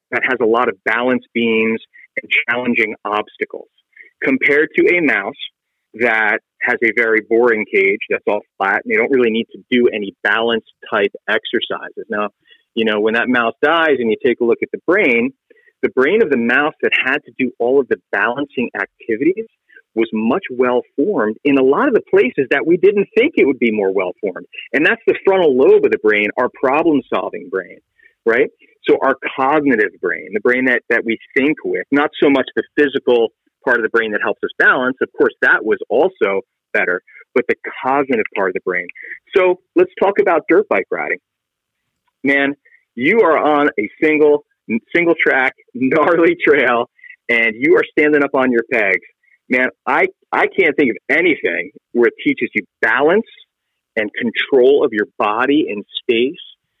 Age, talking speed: 40-59, 185 wpm